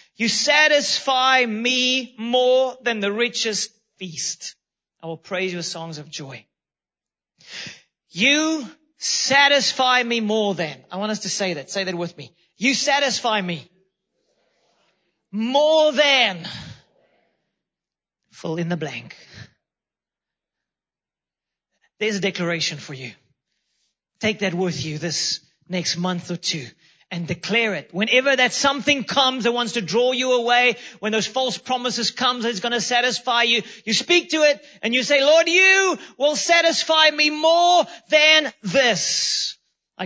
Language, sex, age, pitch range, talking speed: English, male, 30-49, 185-260 Hz, 140 wpm